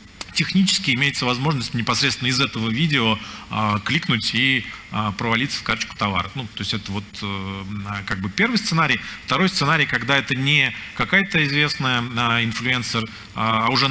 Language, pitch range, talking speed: Russian, 105-130 Hz, 140 wpm